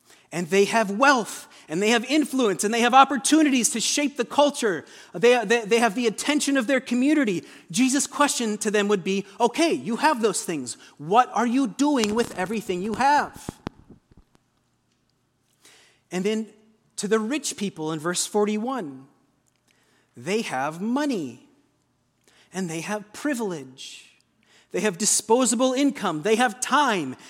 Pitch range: 190-250 Hz